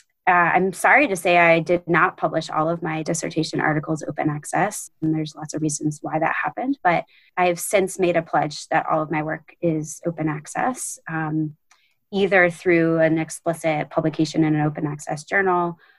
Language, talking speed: English, 190 wpm